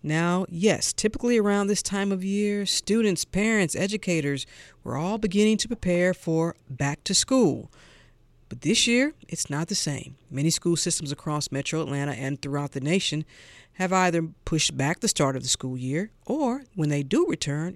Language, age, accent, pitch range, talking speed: English, 50-69, American, 145-210 Hz, 175 wpm